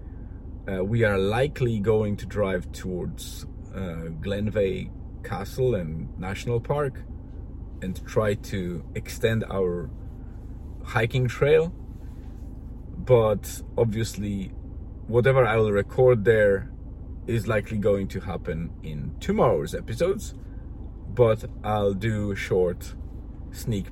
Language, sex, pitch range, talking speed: English, male, 90-115 Hz, 105 wpm